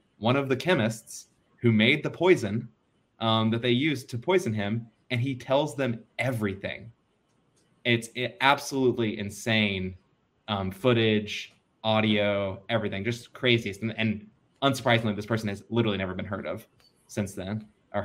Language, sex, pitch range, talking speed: English, male, 95-115 Hz, 140 wpm